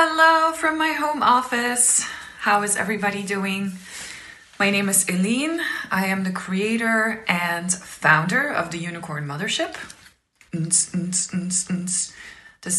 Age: 20-39